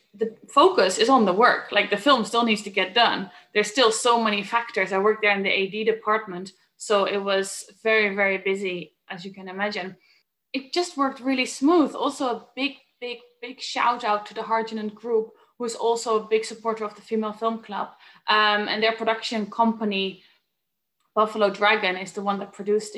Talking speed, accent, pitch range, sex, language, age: 195 wpm, Dutch, 195-220 Hz, female, English, 20-39